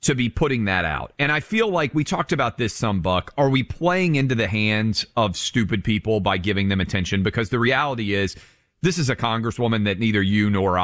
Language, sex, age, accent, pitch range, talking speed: English, male, 40-59, American, 95-140 Hz, 220 wpm